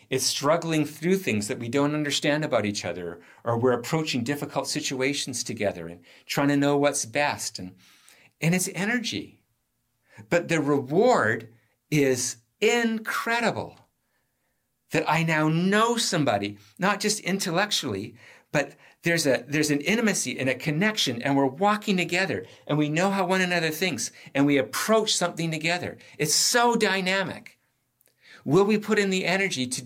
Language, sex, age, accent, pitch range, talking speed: English, male, 50-69, American, 115-170 Hz, 150 wpm